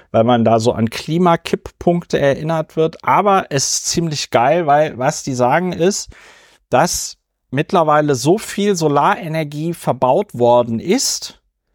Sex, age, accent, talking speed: male, 40-59, German, 135 wpm